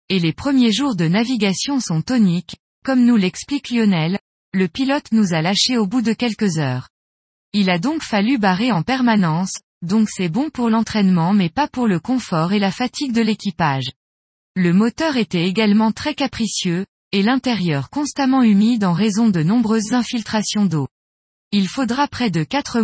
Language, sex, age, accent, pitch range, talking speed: French, female, 20-39, French, 180-245 Hz, 170 wpm